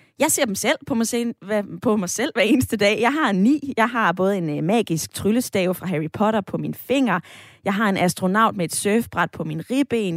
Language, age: Danish, 20-39